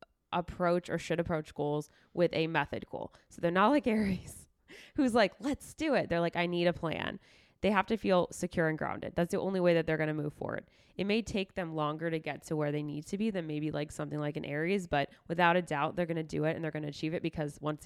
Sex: female